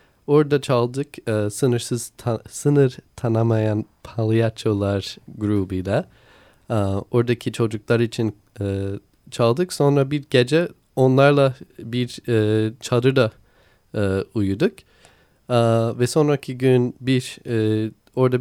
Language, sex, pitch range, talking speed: Turkish, male, 110-140 Hz, 80 wpm